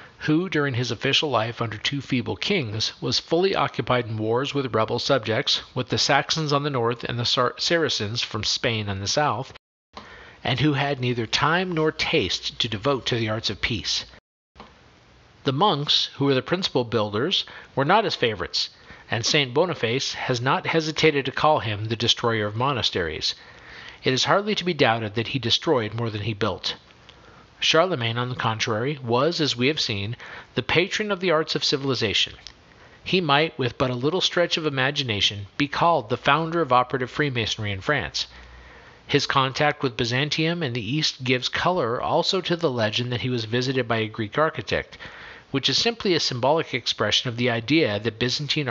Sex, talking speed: male, 180 wpm